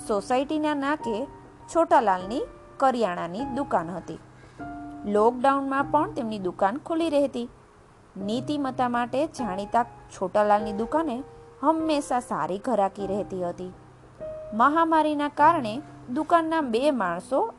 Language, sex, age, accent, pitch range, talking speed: Gujarati, female, 20-39, native, 200-285 Hz, 40 wpm